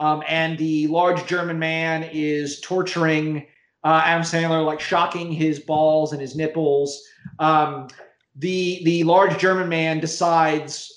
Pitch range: 155-180 Hz